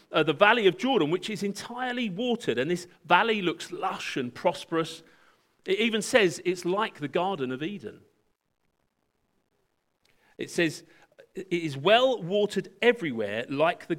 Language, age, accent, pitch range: English, 40-59, British, 150-215 Hz